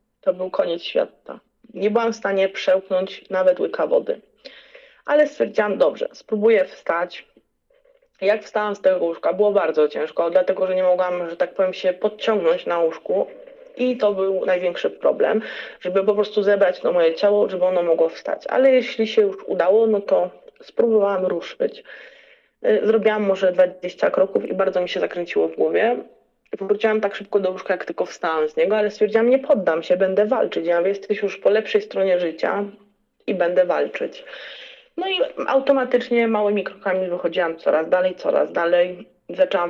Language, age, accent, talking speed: Polish, 20-39, native, 165 wpm